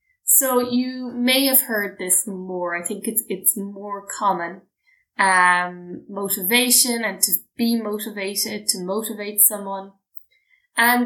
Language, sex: English, female